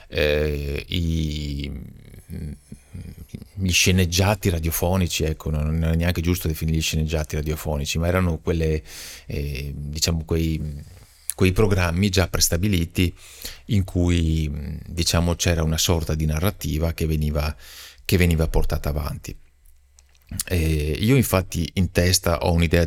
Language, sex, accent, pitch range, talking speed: Italian, male, native, 75-90 Hz, 115 wpm